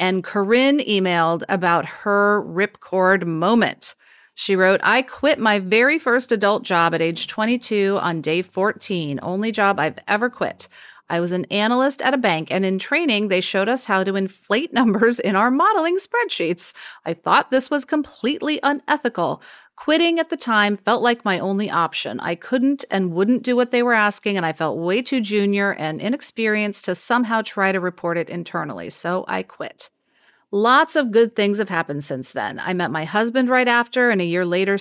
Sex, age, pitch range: female, 40-59, 175-235 Hz